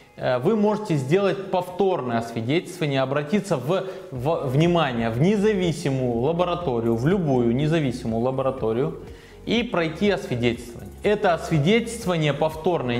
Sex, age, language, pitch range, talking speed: male, 20-39, Russian, 125-180 Hz, 100 wpm